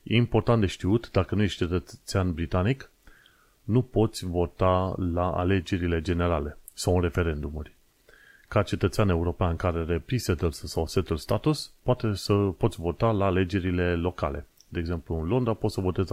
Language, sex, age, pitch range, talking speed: Romanian, male, 30-49, 90-105 Hz, 150 wpm